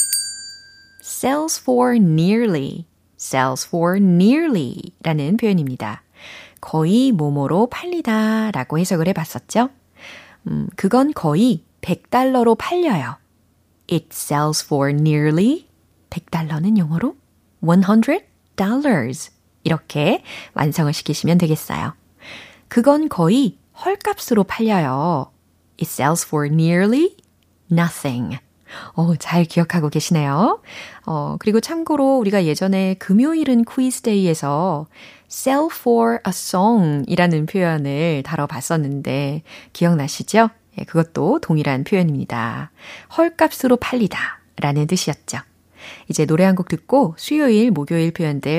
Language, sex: Korean, female